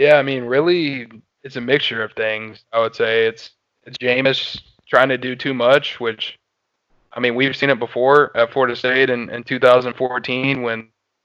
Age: 20-39